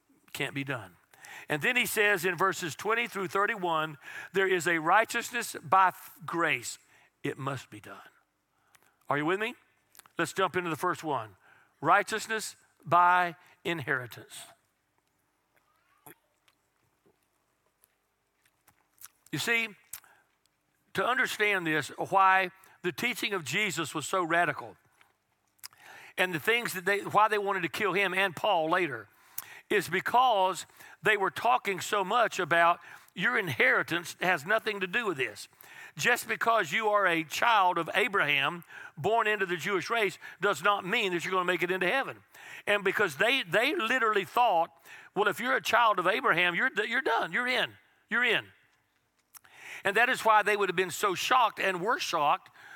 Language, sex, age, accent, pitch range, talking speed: English, male, 60-79, American, 175-210 Hz, 155 wpm